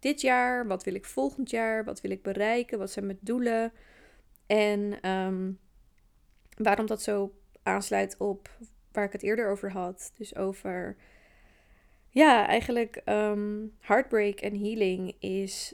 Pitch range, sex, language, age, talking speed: 195-215 Hz, female, Dutch, 20-39, 135 wpm